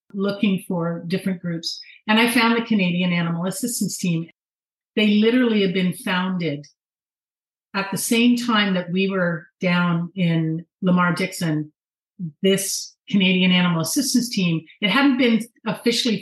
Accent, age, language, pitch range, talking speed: American, 40-59, English, 175-215 Hz, 135 wpm